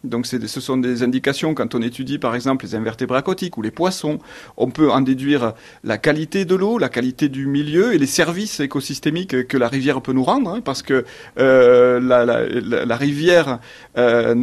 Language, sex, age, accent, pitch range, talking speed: French, male, 40-59, French, 130-180 Hz, 210 wpm